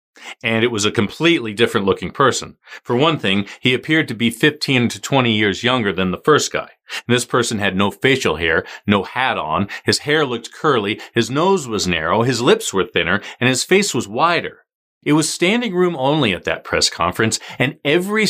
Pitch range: 100-145 Hz